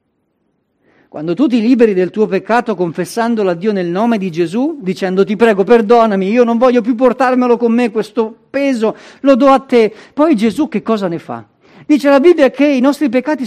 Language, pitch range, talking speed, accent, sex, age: Italian, 180-265 Hz, 195 wpm, native, male, 50-69